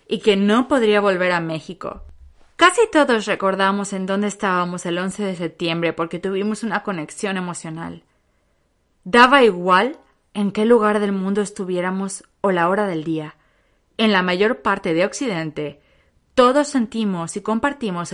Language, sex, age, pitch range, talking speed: Spanish, female, 20-39, 165-215 Hz, 150 wpm